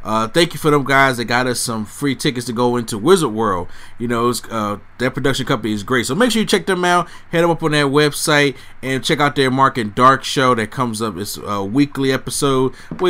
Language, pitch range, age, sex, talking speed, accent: English, 120-150 Hz, 30-49, male, 245 wpm, American